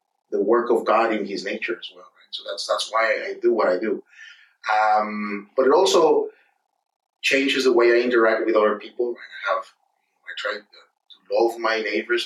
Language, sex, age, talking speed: English, male, 30-49, 195 wpm